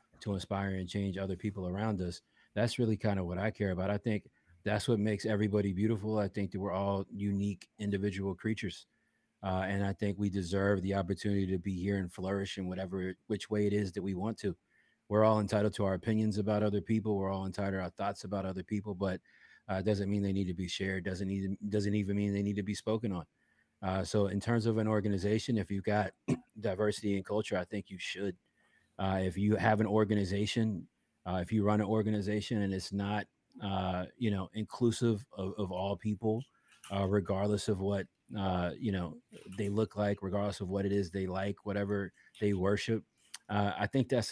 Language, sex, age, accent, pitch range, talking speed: English, male, 30-49, American, 95-105 Hz, 210 wpm